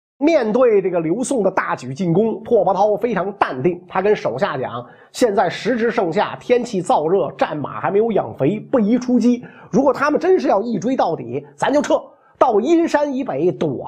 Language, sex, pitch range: Chinese, male, 190-285 Hz